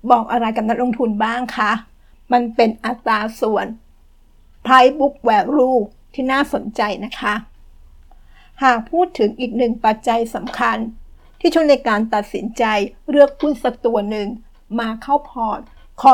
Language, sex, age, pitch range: Thai, female, 60-79, 225-260 Hz